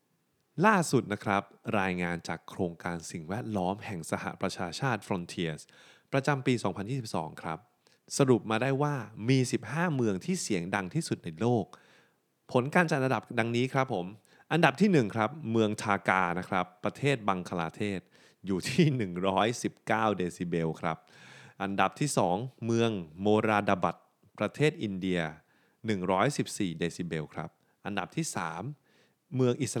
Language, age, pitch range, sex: Thai, 20-39, 95-130 Hz, male